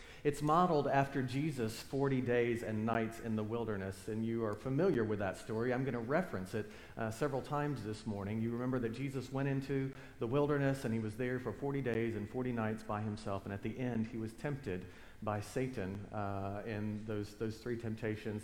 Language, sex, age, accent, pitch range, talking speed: English, male, 40-59, American, 95-125 Hz, 205 wpm